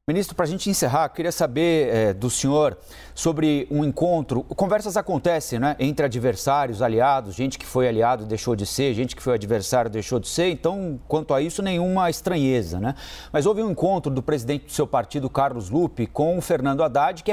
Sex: male